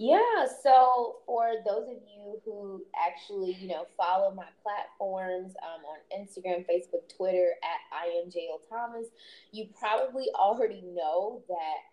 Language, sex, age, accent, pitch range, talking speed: English, female, 20-39, American, 180-255 Hz, 135 wpm